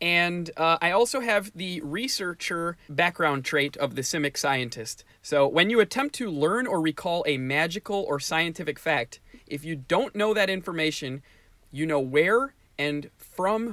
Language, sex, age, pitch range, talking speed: English, male, 30-49, 140-180 Hz, 160 wpm